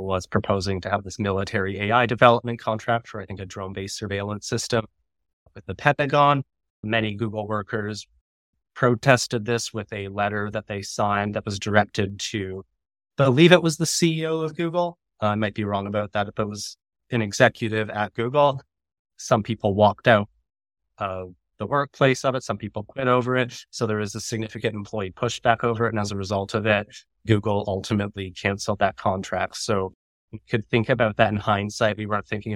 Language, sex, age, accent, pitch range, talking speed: English, male, 30-49, American, 100-115 Hz, 185 wpm